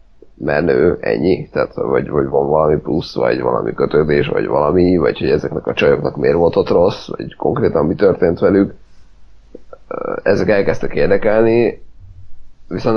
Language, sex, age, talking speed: Hungarian, male, 30-49, 145 wpm